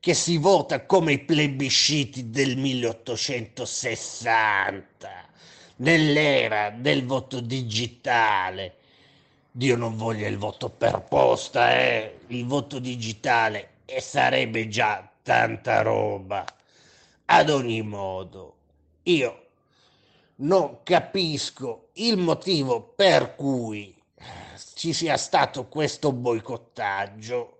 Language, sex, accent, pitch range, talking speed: Italian, male, native, 115-150 Hz, 95 wpm